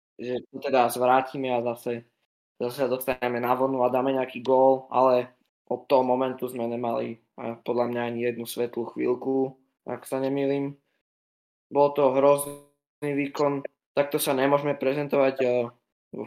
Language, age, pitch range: Slovak, 20-39, 120-140 Hz